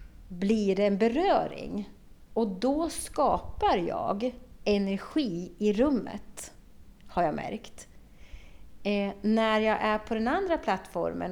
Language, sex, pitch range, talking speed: Swedish, female, 180-245 Hz, 115 wpm